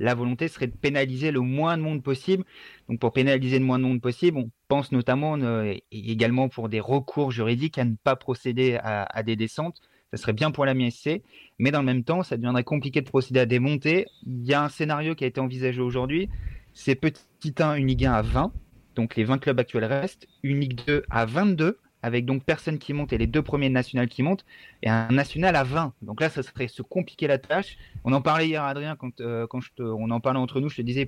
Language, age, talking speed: French, 30-49, 235 wpm